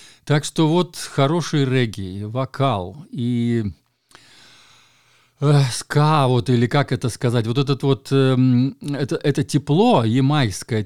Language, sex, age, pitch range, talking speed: Russian, male, 50-69, 105-135 Hz, 115 wpm